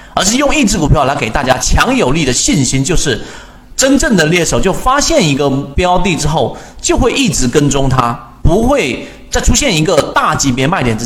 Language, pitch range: Chinese, 125-195 Hz